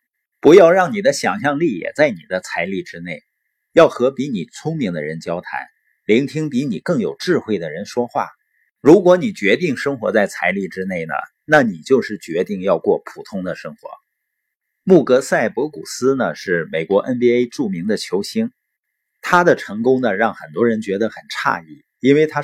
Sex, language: male, Chinese